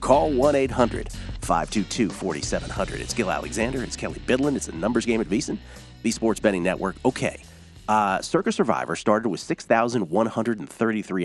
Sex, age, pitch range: male, 40-59, 100-165 Hz